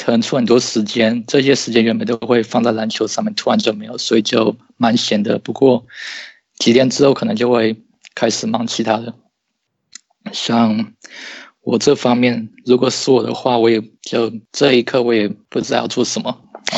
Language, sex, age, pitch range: Chinese, male, 20-39, 110-125 Hz